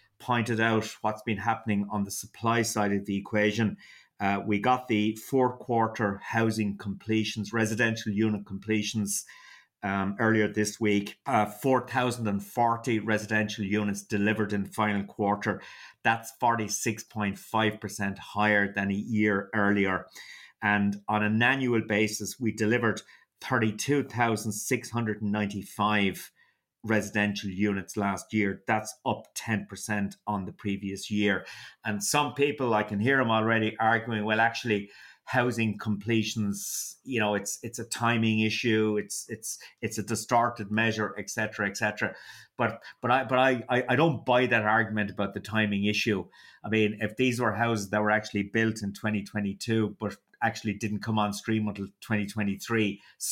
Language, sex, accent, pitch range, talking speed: English, male, Irish, 105-115 Hz, 140 wpm